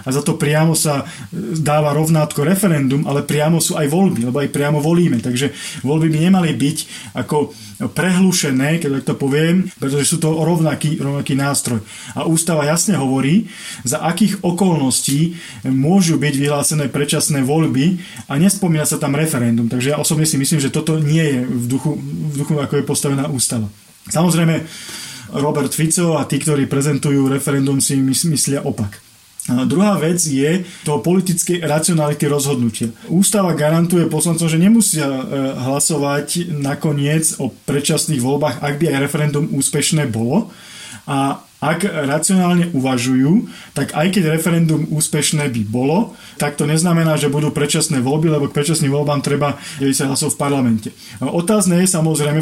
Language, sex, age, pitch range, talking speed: Slovak, male, 30-49, 140-165 Hz, 150 wpm